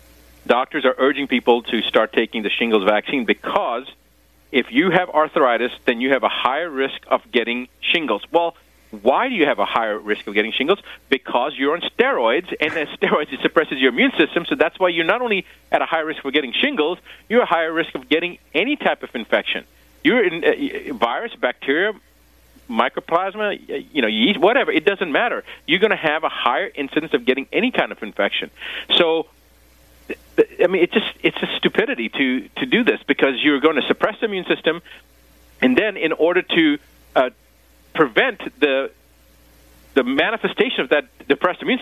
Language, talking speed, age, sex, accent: English, 185 wpm, 40-59, male, American